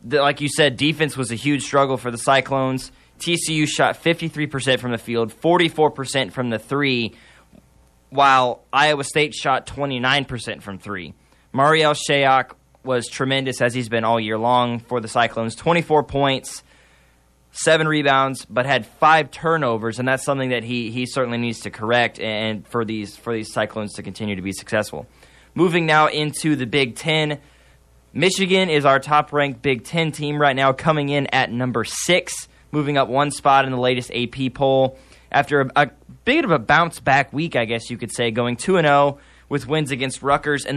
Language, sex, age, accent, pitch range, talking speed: English, male, 10-29, American, 115-150 Hz, 180 wpm